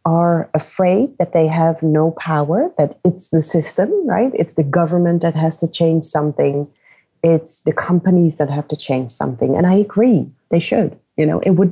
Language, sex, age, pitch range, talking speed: English, female, 30-49, 150-185 Hz, 190 wpm